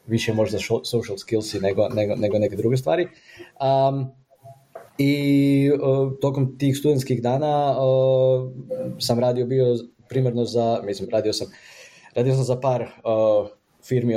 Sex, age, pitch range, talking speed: male, 20-39, 110-130 Hz, 135 wpm